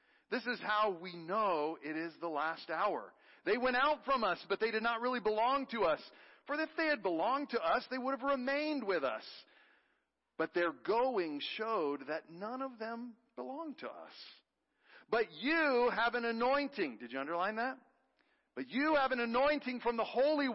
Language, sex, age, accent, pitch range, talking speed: English, male, 50-69, American, 200-275 Hz, 185 wpm